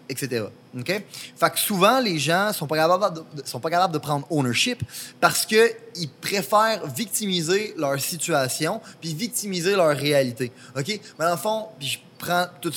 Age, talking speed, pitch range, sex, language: 20-39, 160 wpm, 140-175 Hz, male, French